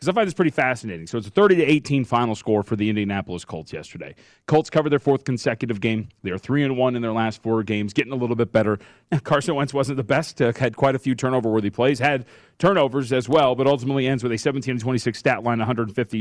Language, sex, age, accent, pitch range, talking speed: English, male, 30-49, American, 110-140 Hz, 235 wpm